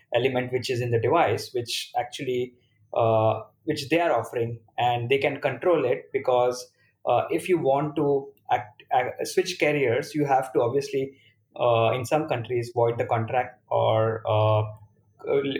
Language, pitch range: English, 120-150 Hz